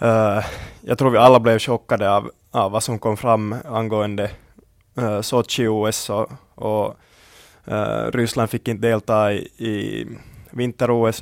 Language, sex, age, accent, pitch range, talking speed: Swedish, male, 20-39, Finnish, 105-120 Hz, 125 wpm